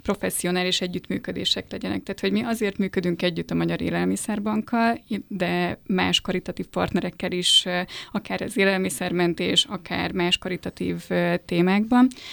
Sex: female